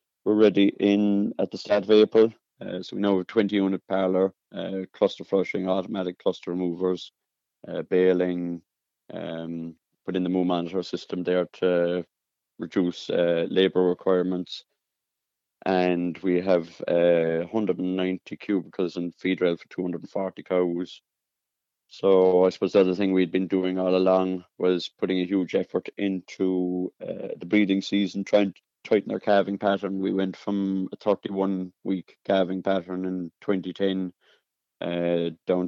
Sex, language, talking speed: male, English, 145 wpm